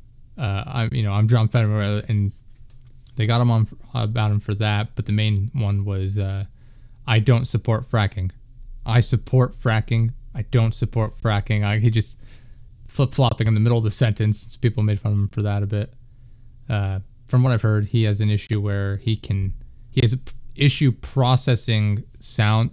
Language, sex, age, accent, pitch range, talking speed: English, male, 20-39, American, 105-120 Hz, 180 wpm